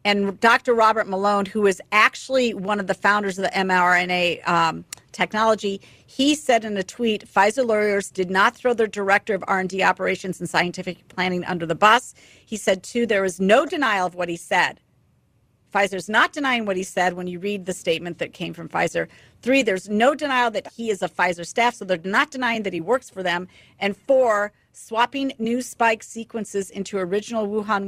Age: 50-69